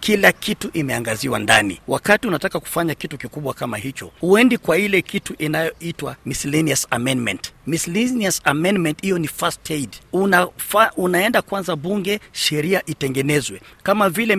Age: 40-59